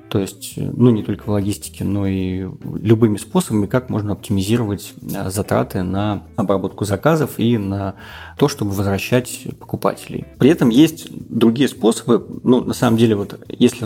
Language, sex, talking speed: Russian, male, 150 wpm